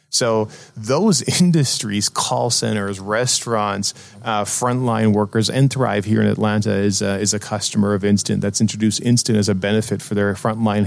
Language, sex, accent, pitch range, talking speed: English, male, American, 105-120 Hz, 165 wpm